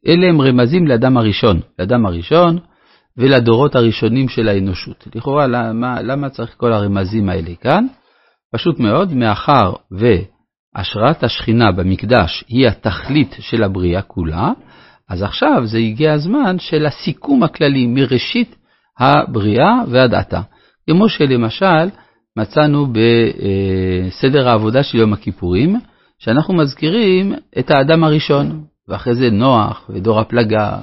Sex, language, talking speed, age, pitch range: male, Hebrew, 115 wpm, 50-69, 110-150 Hz